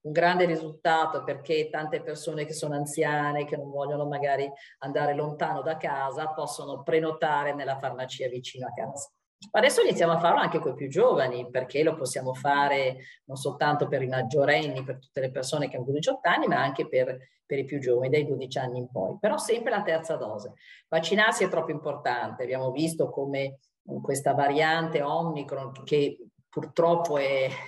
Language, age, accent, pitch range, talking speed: Italian, 50-69, native, 135-165 Hz, 175 wpm